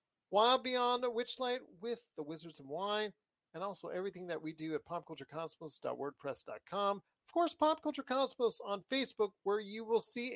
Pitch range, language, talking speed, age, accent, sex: 180-245 Hz, English, 155 wpm, 40-59, American, male